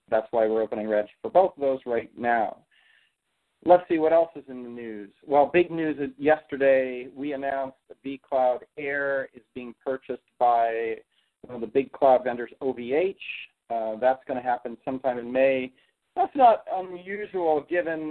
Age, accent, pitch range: 40-59, American, 130-155 Hz